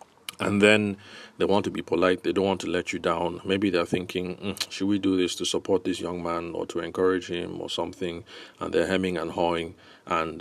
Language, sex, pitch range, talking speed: English, male, 90-105 Hz, 220 wpm